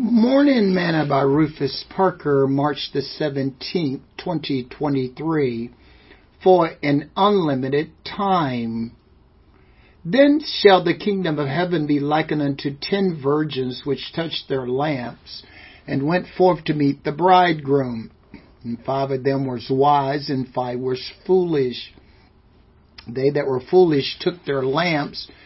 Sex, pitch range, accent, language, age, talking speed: male, 135-170 Hz, American, English, 60-79, 125 wpm